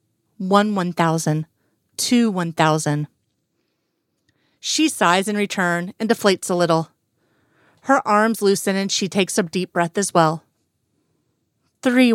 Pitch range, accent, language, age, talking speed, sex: 170-230 Hz, American, English, 30-49, 130 wpm, female